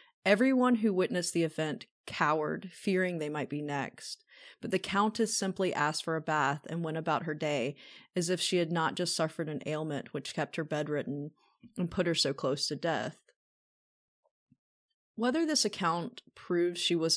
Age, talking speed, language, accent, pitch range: 30-49, 175 wpm, English, American, 150-190 Hz